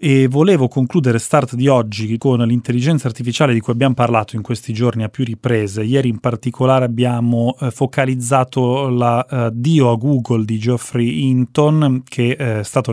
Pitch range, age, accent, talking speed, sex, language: 120-135 Hz, 30-49, native, 160 wpm, male, Italian